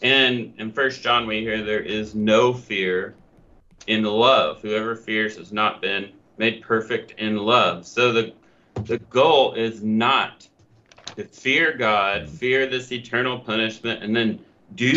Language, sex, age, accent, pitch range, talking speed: English, male, 30-49, American, 110-125 Hz, 150 wpm